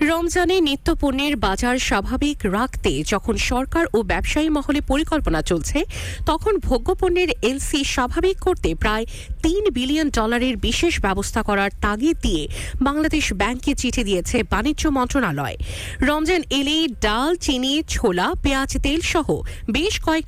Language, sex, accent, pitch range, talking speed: English, female, Indian, 235-325 Hz, 105 wpm